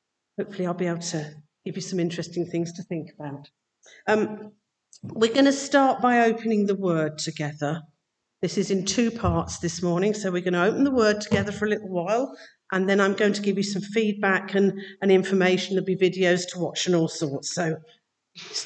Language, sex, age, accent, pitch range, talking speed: English, female, 50-69, British, 170-225 Hz, 205 wpm